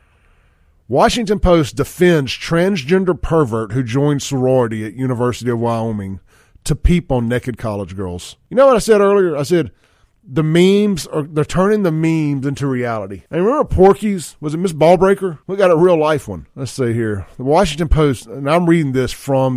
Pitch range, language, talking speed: 120-170 Hz, English, 185 wpm